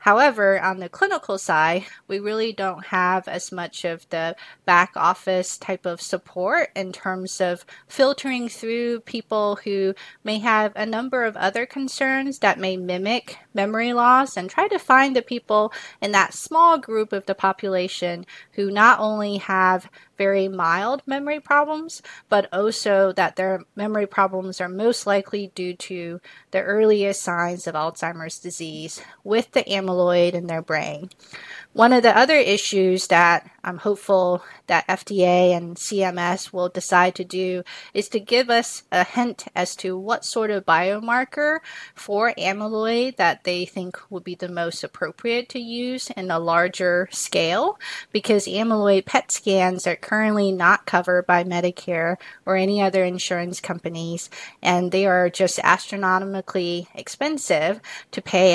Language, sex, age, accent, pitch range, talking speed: English, female, 30-49, American, 180-230 Hz, 150 wpm